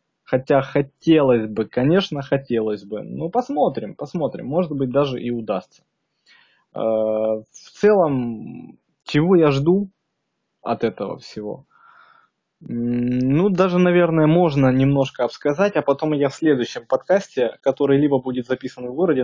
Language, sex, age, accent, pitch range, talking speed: Russian, male, 20-39, native, 120-150 Hz, 125 wpm